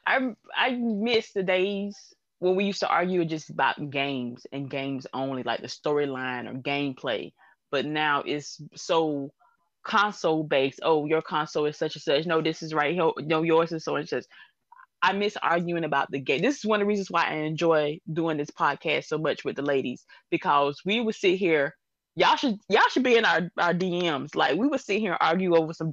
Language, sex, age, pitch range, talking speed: English, female, 20-39, 150-200 Hz, 210 wpm